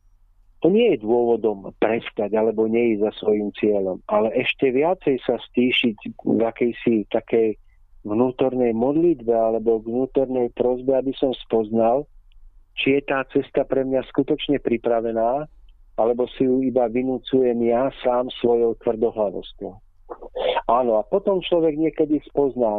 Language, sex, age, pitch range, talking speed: Slovak, male, 50-69, 110-135 Hz, 130 wpm